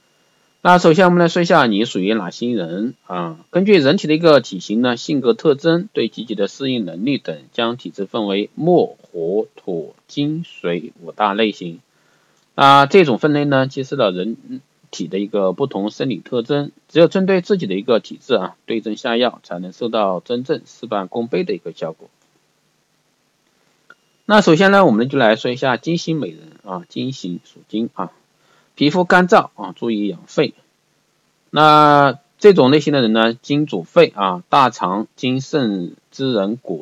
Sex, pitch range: male, 110-165 Hz